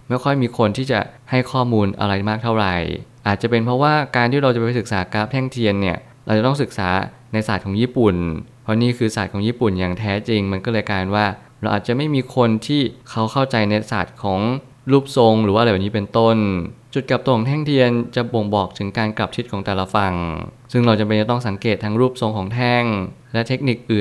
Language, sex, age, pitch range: Thai, male, 20-39, 105-125 Hz